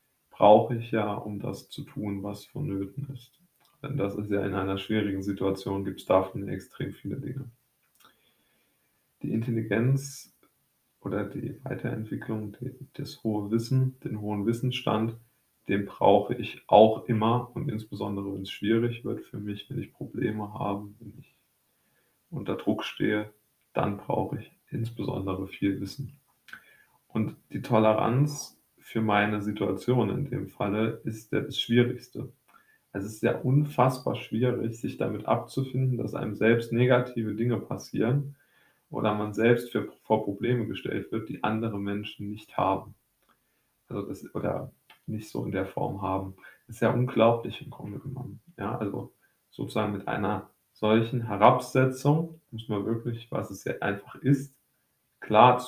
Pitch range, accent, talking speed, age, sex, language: 105-130 Hz, German, 150 wpm, 20-39, male, German